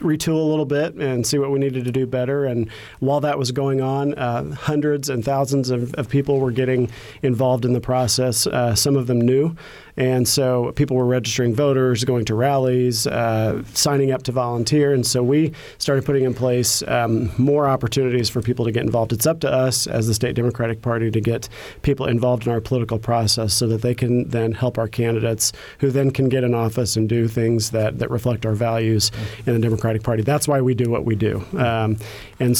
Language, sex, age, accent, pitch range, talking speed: English, male, 40-59, American, 115-135 Hz, 215 wpm